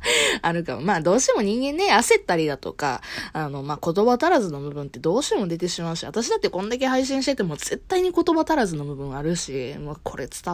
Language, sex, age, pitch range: Japanese, female, 20-39, 170-260 Hz